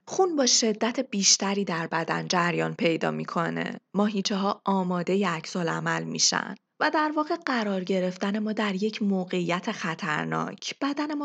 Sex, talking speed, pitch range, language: female, 140 wpm, 175-240 Hz, Persian